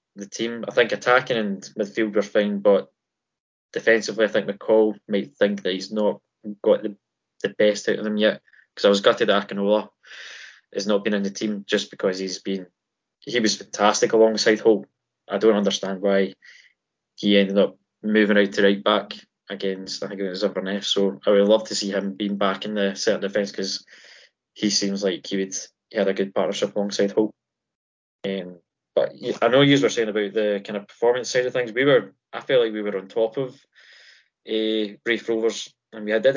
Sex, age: male, 10-29